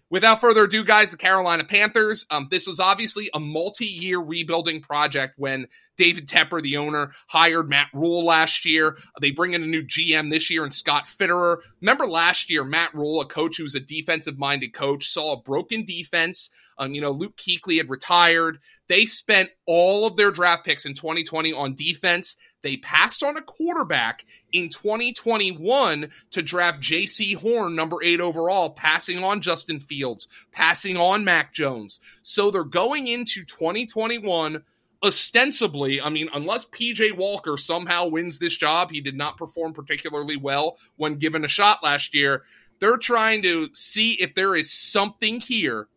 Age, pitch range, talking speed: 20-39, 150-195 Hz, 170 wpm